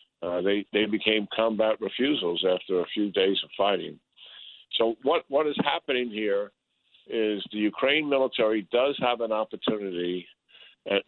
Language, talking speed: English, 145 wpm